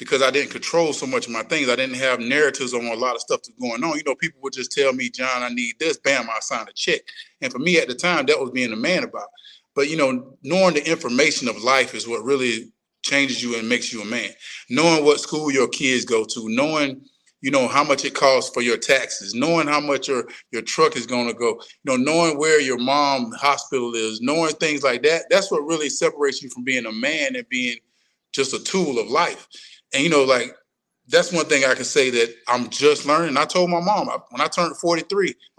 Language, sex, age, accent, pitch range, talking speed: English, male, 30-49, American, 135-185 Hz, 245 wpm